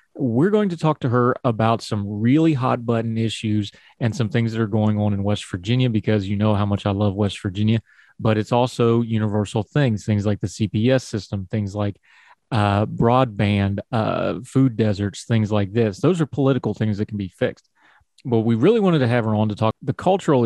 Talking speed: 205 wpm